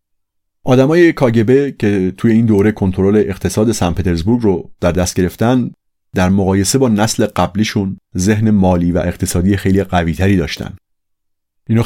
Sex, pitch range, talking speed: male, 90-110 Hz, 135 wpm